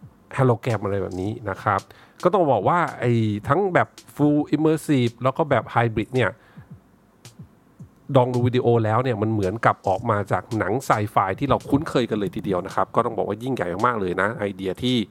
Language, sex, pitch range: Thai, male, 105-130 Hz